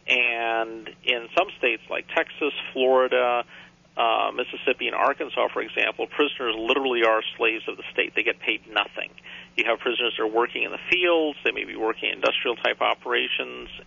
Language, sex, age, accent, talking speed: English, male, 50-69, American, 175 wpm